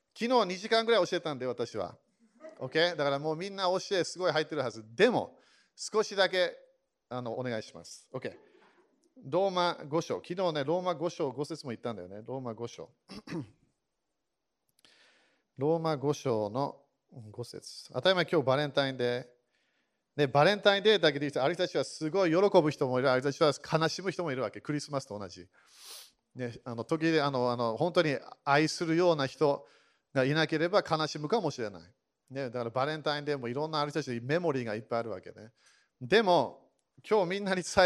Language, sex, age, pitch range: Japanese, male, 40-59, 130-180 Hz